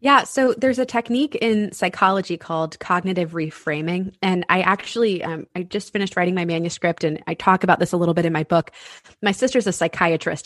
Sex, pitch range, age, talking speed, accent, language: female, 175-235 Hz, 20-39, 200 wpm, American, English